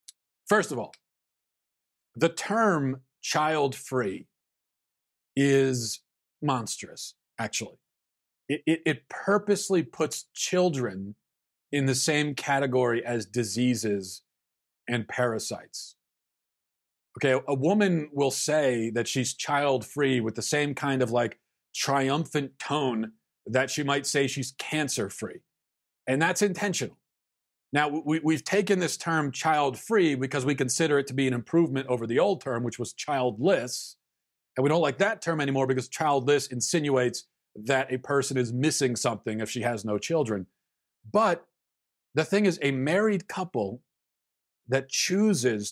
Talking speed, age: 130 wpm, 40-59